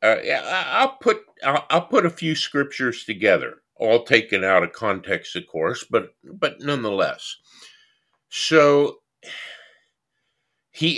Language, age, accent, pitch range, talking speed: English, 50-69, American, 120-160 Hz, 115 wpm